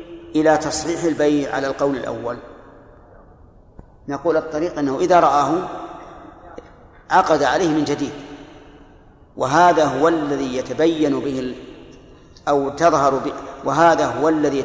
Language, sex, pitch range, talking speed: Arabic, male, 130-160 Hz, 105 wpm